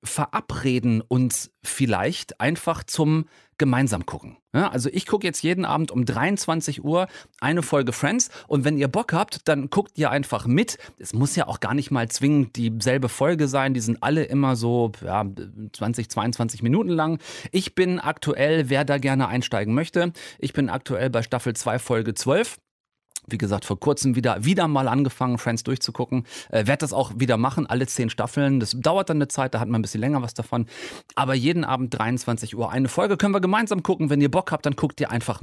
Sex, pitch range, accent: male, 120-155 Hz, German